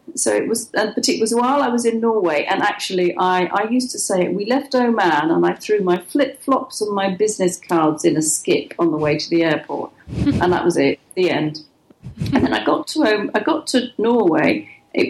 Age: 40-59